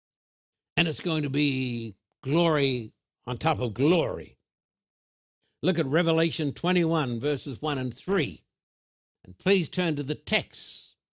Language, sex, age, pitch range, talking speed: English, male, 60-79, 130-175 Hz, 130 wpm